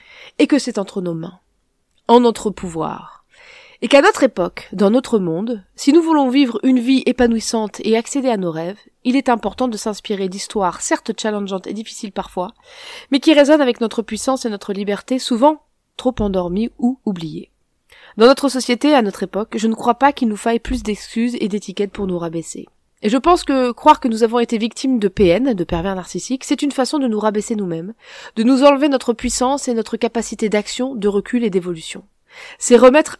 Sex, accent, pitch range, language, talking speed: female, French, 205-265 Hz, French, 200 wpm